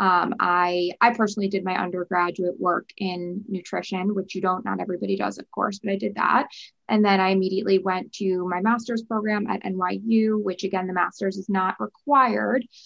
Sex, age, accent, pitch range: female, 20-39, American, 180-215 Hz